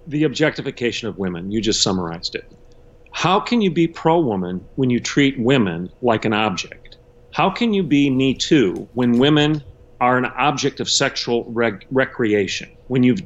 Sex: male